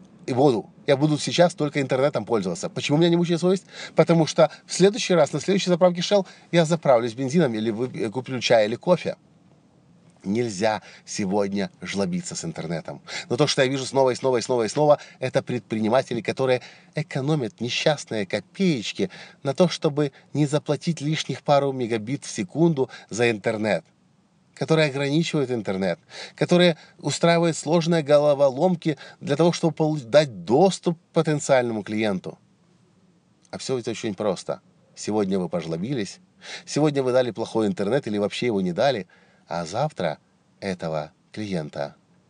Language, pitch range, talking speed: Russian, 125-170 Hz, 145 wpm